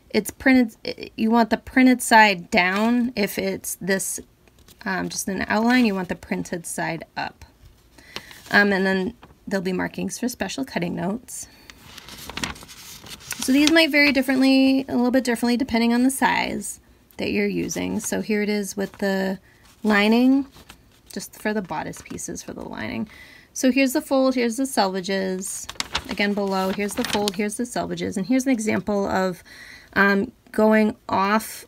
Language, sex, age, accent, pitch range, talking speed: English, female, 20-39, American, 195-245 Hz, 160 wpm